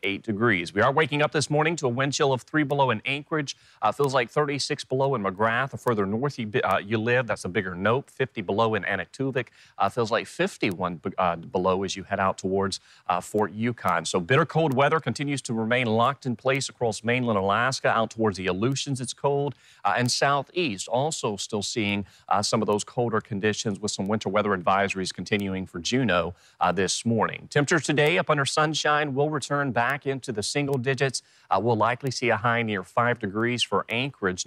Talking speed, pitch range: 205 wpm, 105-135 Hz